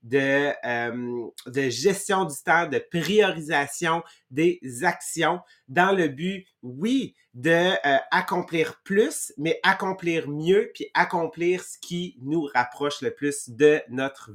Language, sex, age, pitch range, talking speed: English, male, 30-49, 140-175 Hz, 130 wpm